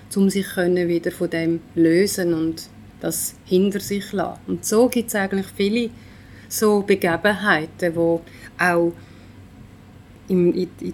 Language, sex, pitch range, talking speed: German, female, 165-205 Hz, 125 wpm